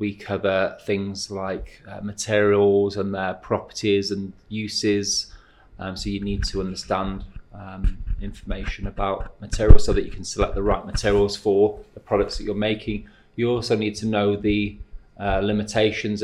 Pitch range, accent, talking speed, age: 95-105 Hz, British, 160 wpm, 20-39